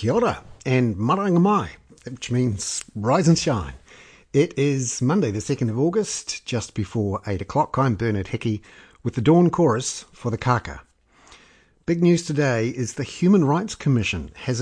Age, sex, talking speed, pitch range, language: 50-69, male, 160 wpm, 110-145 Hz, English